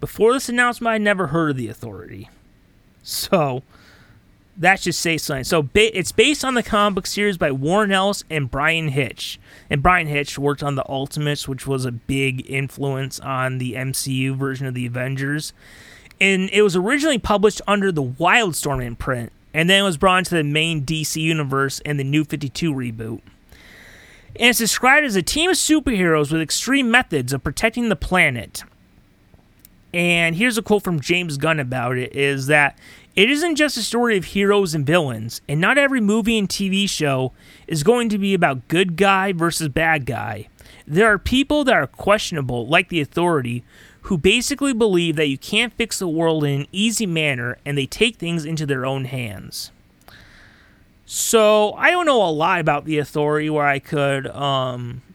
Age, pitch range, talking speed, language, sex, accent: 30-49, 135-200 Hz, 180 wpm, English, male, American